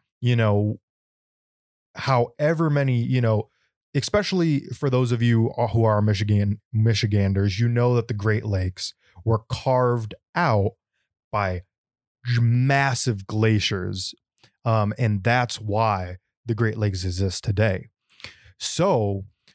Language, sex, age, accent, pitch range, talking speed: English, male, 20-39, American, 100-125 Hz, 115 wpm